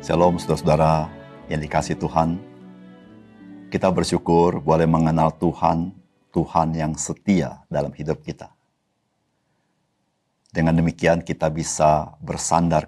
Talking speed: 100 wpm